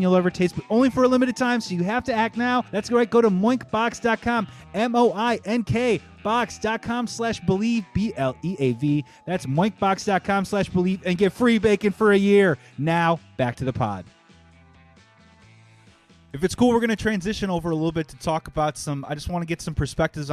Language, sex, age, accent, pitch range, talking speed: English, male, 30-49, American, 140-200 Hz, 190 wpm